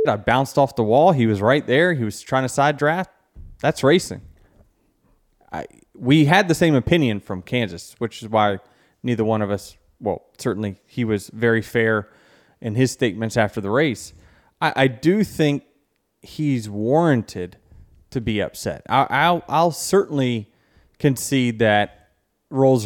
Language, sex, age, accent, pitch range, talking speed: English, male, 20-39, American, 110-155 Hz, 160 wpm